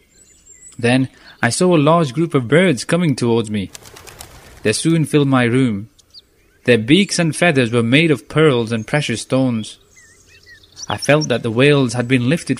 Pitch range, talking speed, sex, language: 115-160 Hz, 165 wpm, male, English